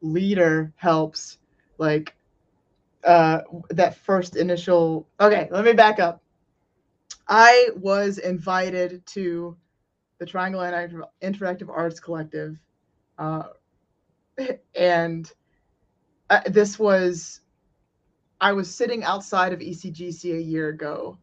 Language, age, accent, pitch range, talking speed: English, 20-39, American, 165-195 Hz, 95 wpm